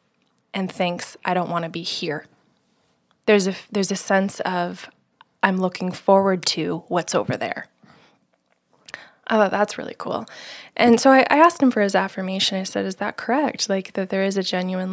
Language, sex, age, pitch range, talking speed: English, female, 20-39, 180-225 Hz, 190 wpm